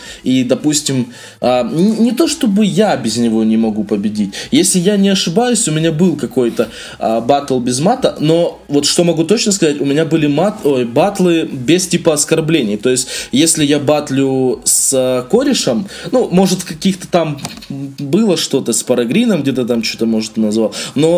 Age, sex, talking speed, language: 20-39, male, 160 wpm, Russian